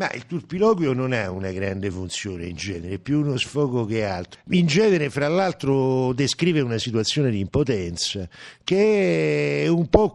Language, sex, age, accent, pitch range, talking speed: Italian, male, 60-79, native, 110-175 Hz, 170 wpm